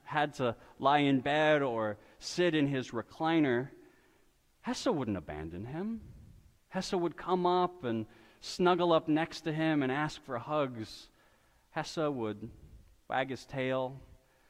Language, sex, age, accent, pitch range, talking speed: English, male, 40-59, American, 130-180 Hz, 135 wpm